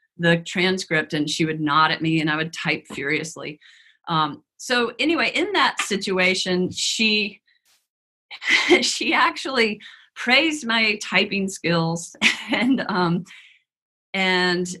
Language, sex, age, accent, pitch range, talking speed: English, female, 40-59, American, 165-215 Hz, 120 wpm